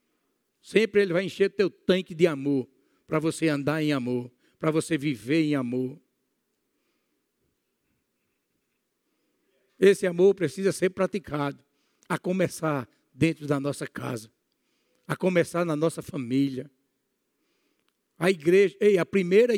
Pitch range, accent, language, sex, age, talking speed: 145-180 Hz, Brazilian, Portuguese, male, 60-79, 115 wpm